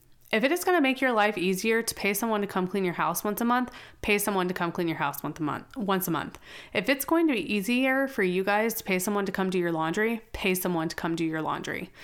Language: English